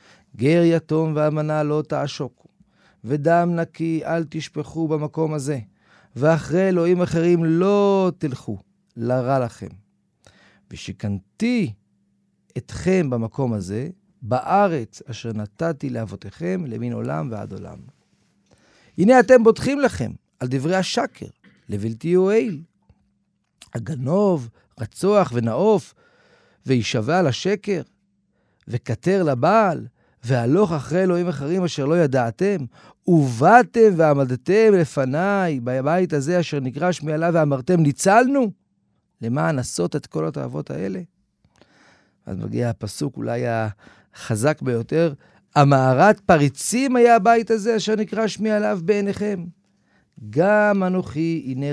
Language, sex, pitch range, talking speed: Hebrew, male, 120-185 Hz, 100 wpm